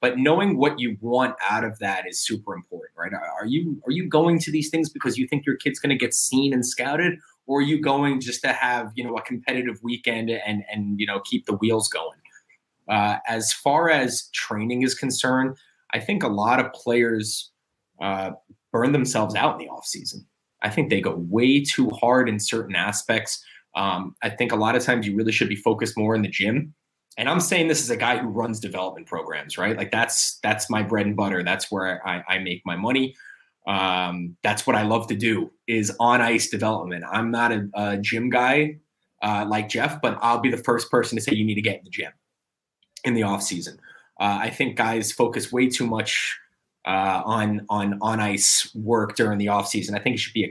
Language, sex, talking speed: English, male, 220 wpm